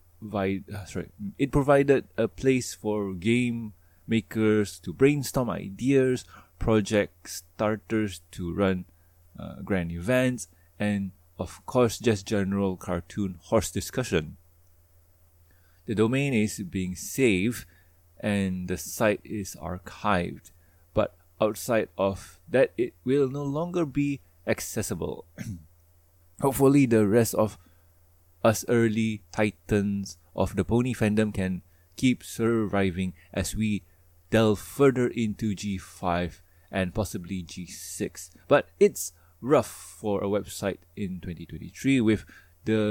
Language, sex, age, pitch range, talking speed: English, male, 20-39, 85-110 Hz, 110 wpm